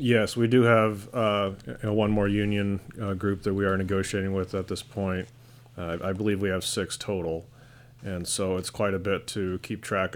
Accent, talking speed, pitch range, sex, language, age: American, 200 wpm, 90-115 Hz, male, English, 30-49